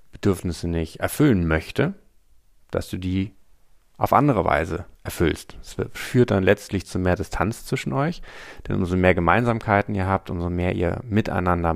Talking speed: 155 wpm